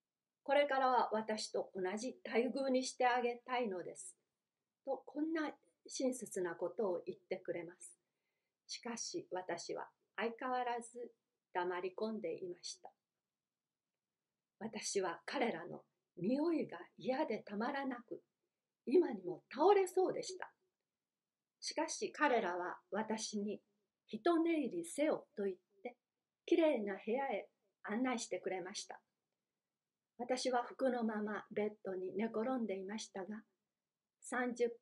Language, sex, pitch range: Japanese, female, 200-275 Hz